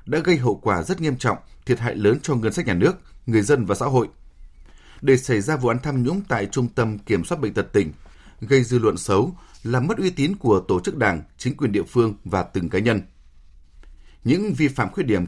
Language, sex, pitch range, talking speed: Vietnamese, male, 95-135 Hz, 235 wpm